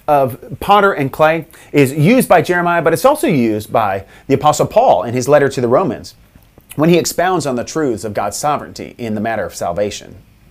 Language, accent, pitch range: English, American, 115-170 Hz